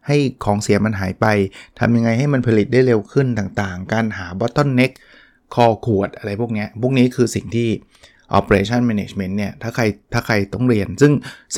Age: 20-39